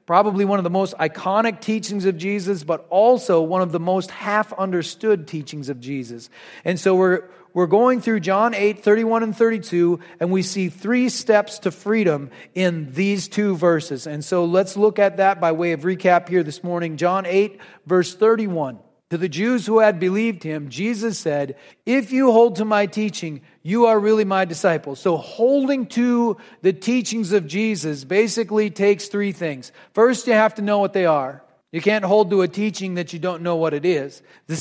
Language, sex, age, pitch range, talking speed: English, male, 40-59, 175-225 Hz, 190 wpm